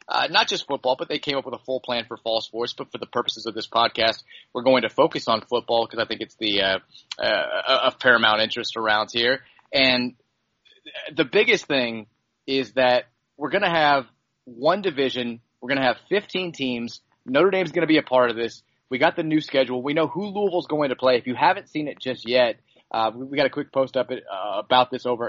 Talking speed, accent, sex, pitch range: 240 wpm, American, male, 120-140 Hz